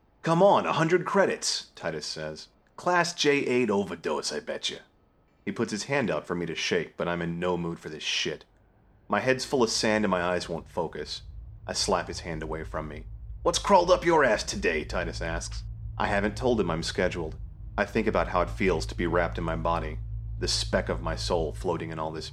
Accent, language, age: American, English, 30-49